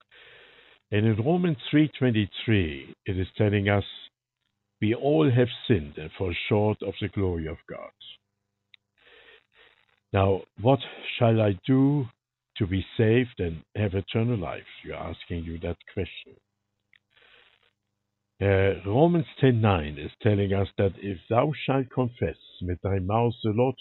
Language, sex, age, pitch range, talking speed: English, male, 60-79, 95-125 Hz, 135 wpm